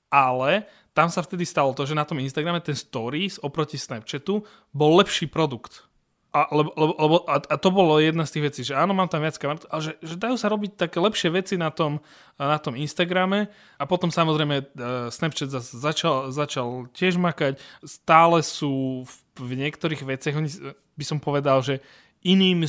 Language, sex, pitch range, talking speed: Slovak, male, 135-160 Hz, 170 wpm